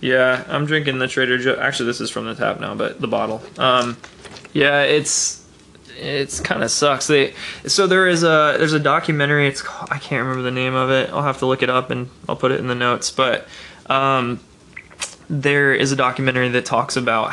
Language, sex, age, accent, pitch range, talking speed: English, male, 20-39, American, 120-135 Hz, 210 wpm